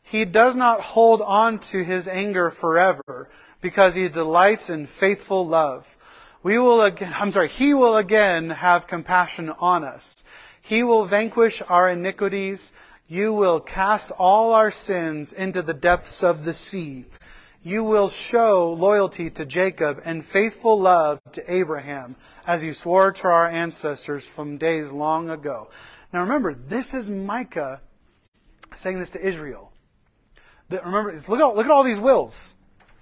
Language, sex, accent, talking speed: English, male, American, 140 wpm